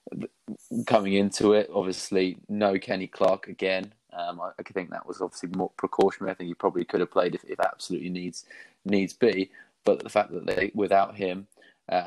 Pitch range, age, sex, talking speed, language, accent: 85-95 Hz, 20-39, male, 185 wpm, English, British